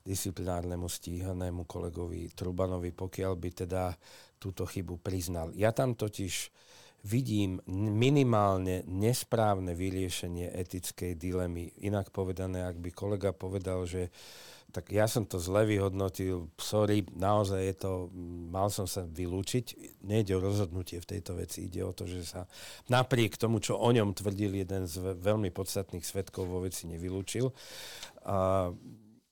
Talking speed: 135 wpm